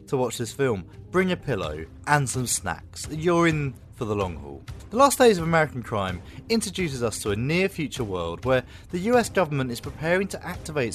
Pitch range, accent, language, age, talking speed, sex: 100-145 Hz, British, English, 30-49, 205 wpm, male